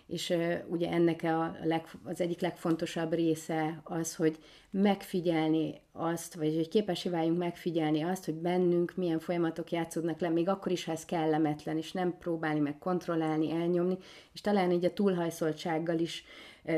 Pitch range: 160-180 Hz